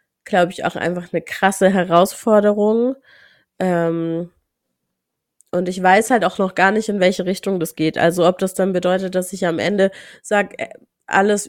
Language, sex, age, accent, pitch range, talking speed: German, female, 20-39, German, 165-190 Hz, 165 wpm